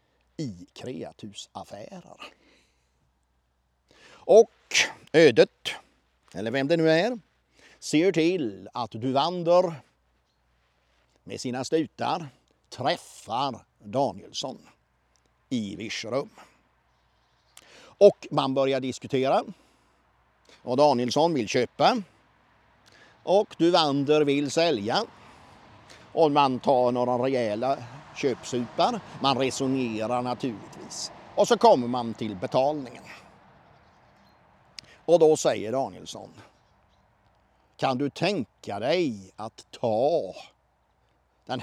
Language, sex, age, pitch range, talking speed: Swedish, male, 50-69, 100-150 Hz, 85 wpm